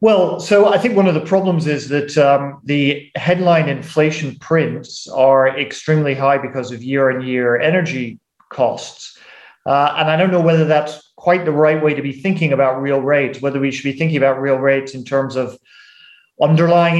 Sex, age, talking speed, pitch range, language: male, 40-59, 185 wpm, 130-165 Hz, English